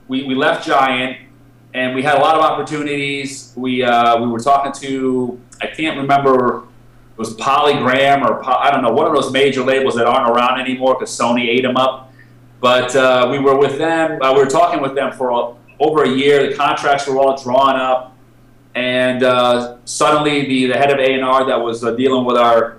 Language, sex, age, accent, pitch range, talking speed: English, male, 30-49, American, 120-140 Hz, 210 wpm